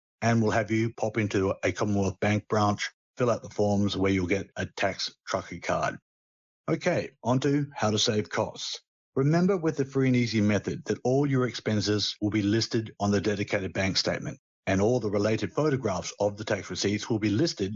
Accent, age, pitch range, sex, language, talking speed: Australian, 50-69, 100-120 Hz, male, English, 200 wpm